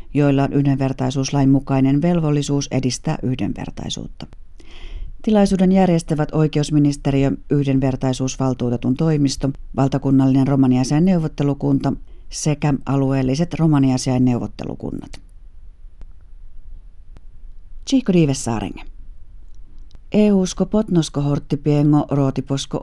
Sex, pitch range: female, 135-155 Hz